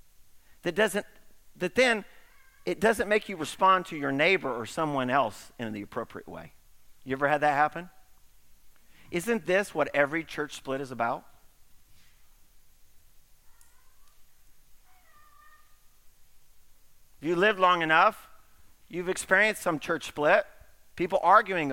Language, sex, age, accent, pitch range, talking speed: English, male, 40-59, American, 125-210 Hz, 120 wpm